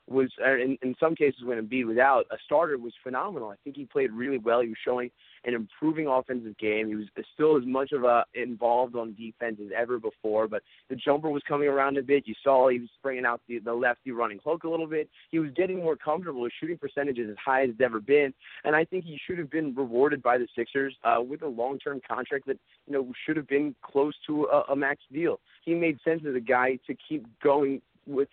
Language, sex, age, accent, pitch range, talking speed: English, male, 30-49, American, 120-150 Hz, 240 wpm